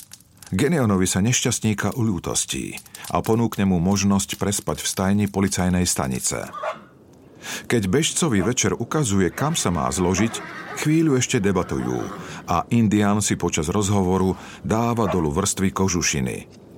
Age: 40-59